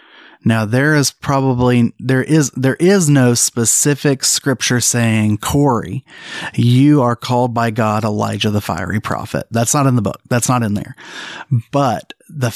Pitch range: 110-135 Hz